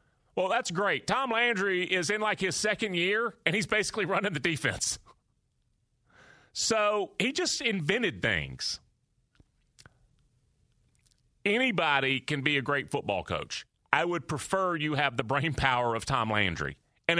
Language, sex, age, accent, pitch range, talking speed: English, male, 40-59, American, 135-190 Hz, 145 wpm